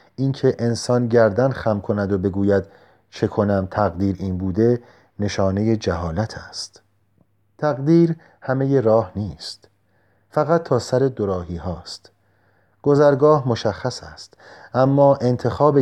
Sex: male